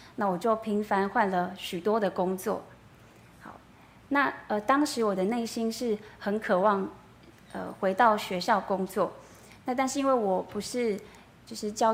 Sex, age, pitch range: female, 20-39, 200-235 Hz